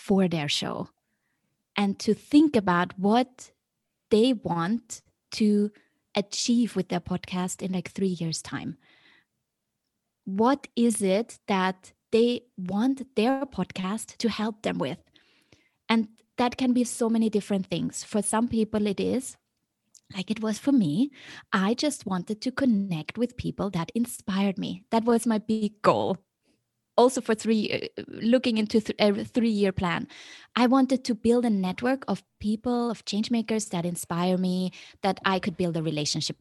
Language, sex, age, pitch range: English, female, 20-39, 185-240 Hz